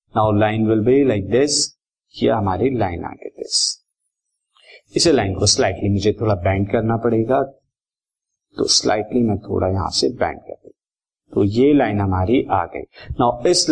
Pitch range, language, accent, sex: 110-150 Hz, Hindi, native, male